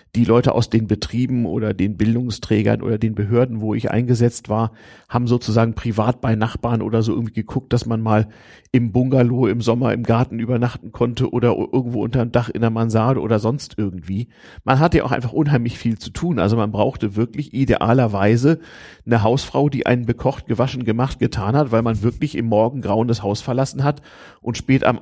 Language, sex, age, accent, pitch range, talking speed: German, male, 40-59, German, 110-130 Hz, 195 wpm